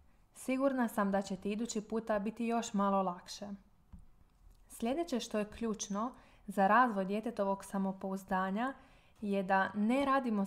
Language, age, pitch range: Croatian, 20-39, 195-230 Hz